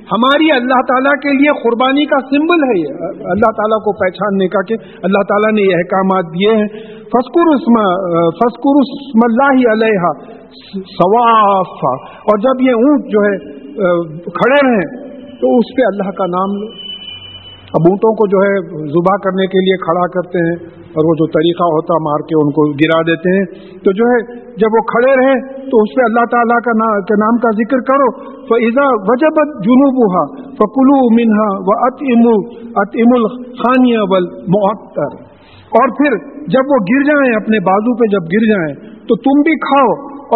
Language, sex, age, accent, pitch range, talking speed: English, male, 50-69, Indian, 185-250 Hz, 160 wpm